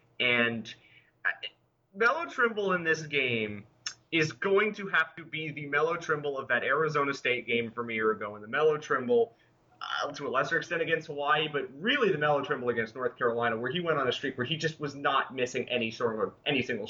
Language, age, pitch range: English, 30-49, 135-200 Hz